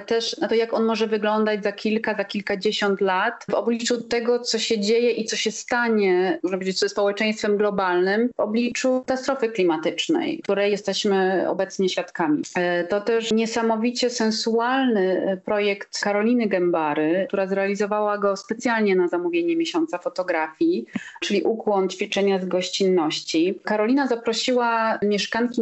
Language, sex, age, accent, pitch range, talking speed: Polish, female, 30-49, native, 200-235 Hz, 135 wpm